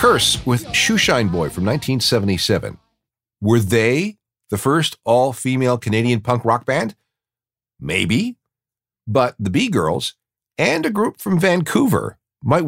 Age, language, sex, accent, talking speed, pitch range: 50-69, English, male, American, 120 wpm, 85-125 Hz